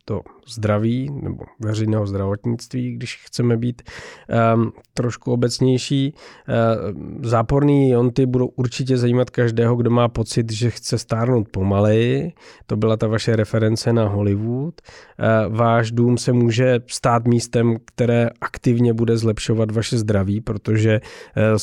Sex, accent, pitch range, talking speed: male, native, 105-120 Hz, 130 wpm